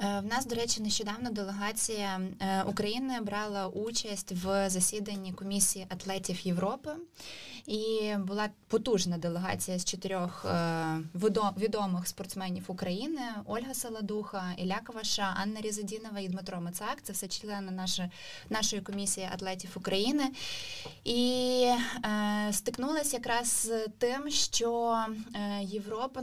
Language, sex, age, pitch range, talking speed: Ukrainian, female, 20-39, 195-230 Hz, 105 wpm